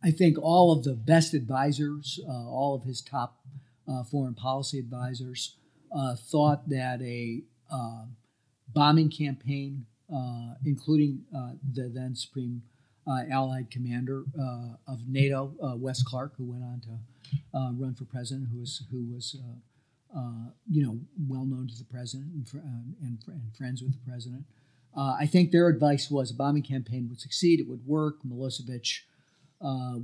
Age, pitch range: 50-69, 125-145 Hz